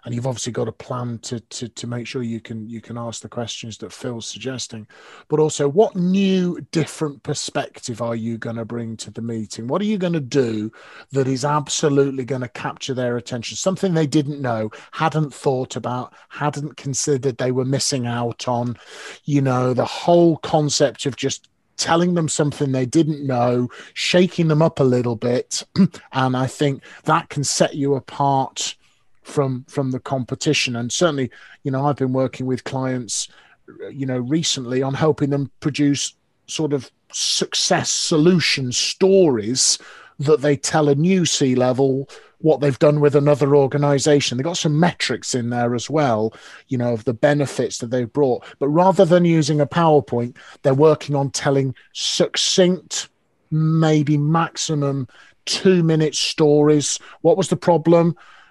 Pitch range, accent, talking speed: 125-155 Hz, British, 165 wpm